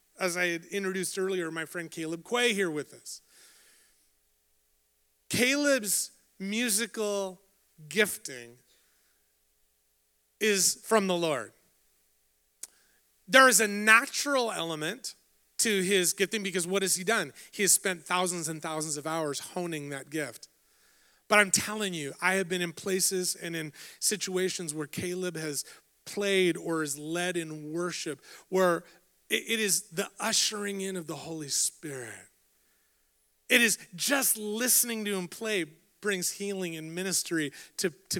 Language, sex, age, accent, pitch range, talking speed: English, male, 30-49, American, 155-210 Hz, 135 wpm